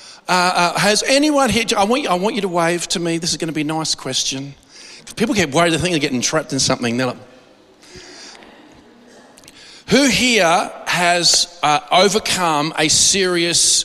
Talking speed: 180 wpm